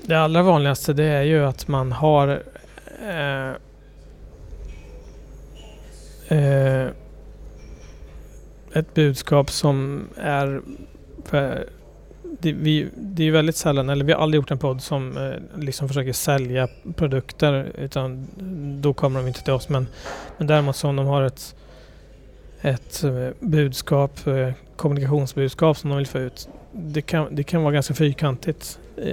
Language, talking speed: Swedish, 135 wpm